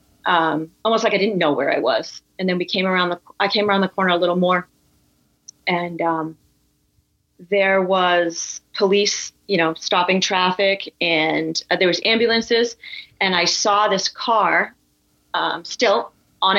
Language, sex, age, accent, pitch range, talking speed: English, female, 30-49, American, 165-200 Hz, 160 wpm